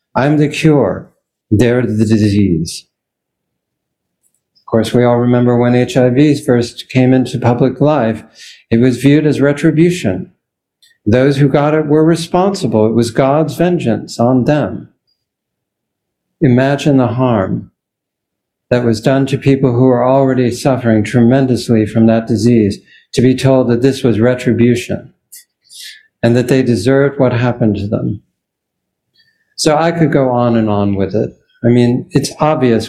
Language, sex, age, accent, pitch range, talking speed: English, male, 60-79, American, 115-140 Hz, 145 wpm